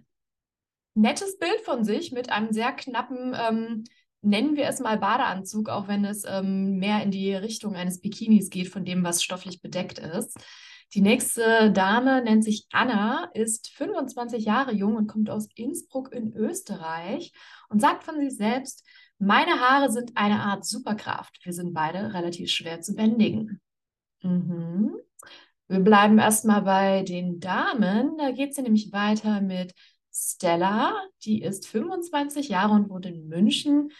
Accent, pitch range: German, 195-255 Hz